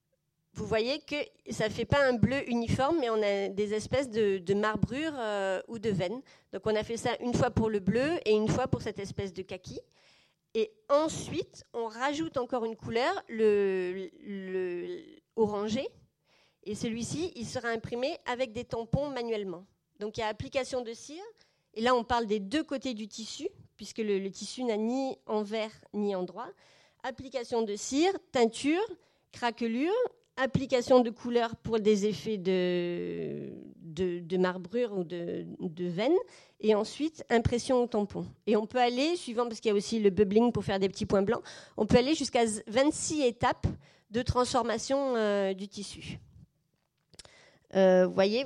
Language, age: French, 40-59